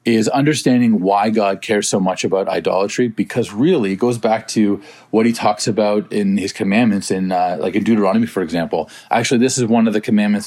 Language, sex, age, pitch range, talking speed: English, male, 30-49, 105-125 Hz, 205 wpm